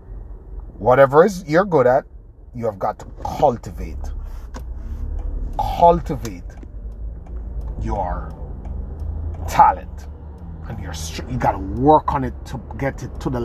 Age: 30-49